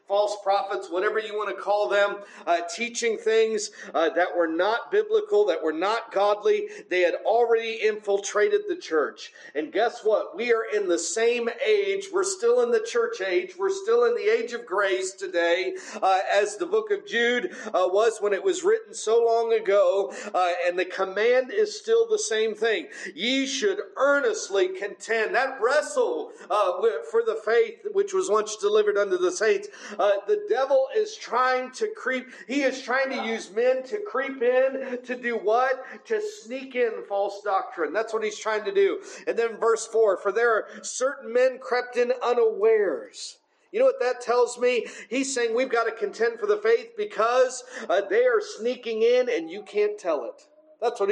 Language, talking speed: English, 190 wpm